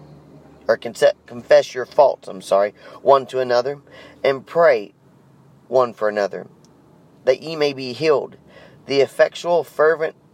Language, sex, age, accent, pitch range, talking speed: English, male, 40-59, American, 120-160 Hz, 130 wpm